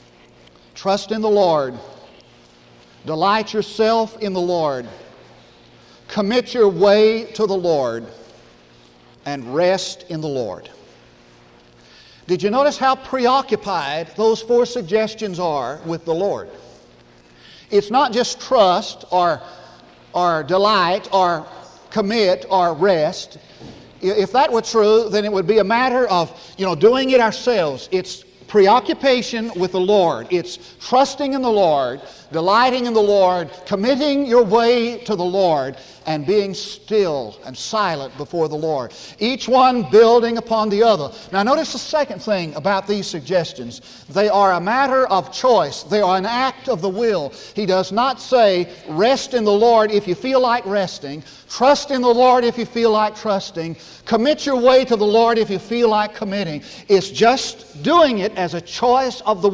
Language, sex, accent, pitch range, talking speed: English, male, American, 170-230 Hz, 155 wpm